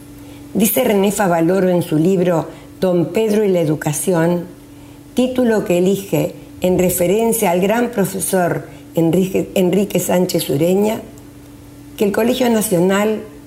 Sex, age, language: female, 50-69, Spanish